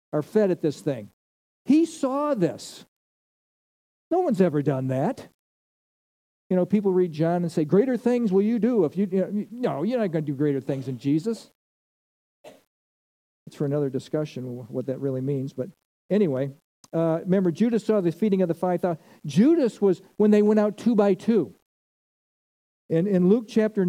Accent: American